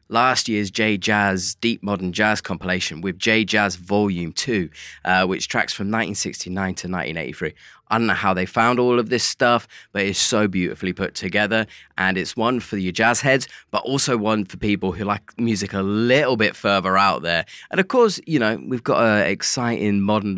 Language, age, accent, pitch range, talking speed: English, 20-39, British, 95-115 Hz, 195 wpm